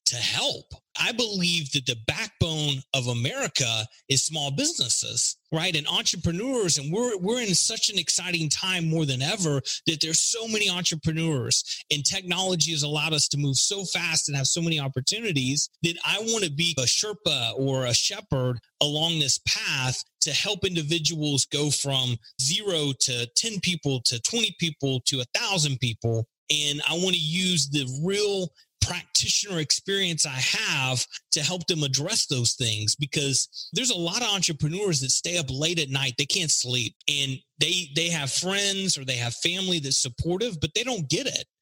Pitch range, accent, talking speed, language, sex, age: 135-175 Hz, American, 175 wpm, English, male, 30-49